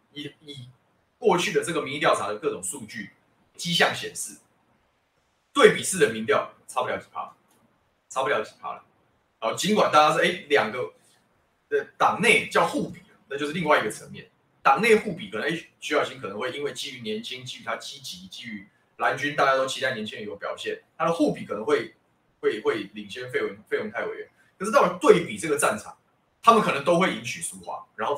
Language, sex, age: Chinese, male, 20-39